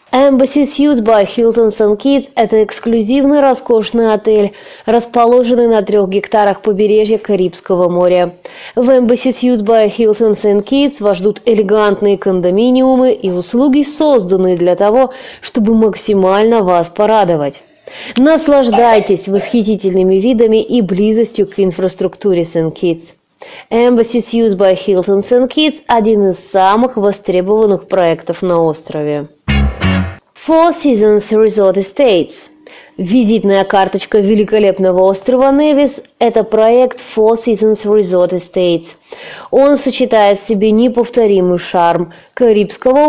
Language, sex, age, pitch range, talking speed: Russian, female, 20-39, 190-250 Hz, 110 wpm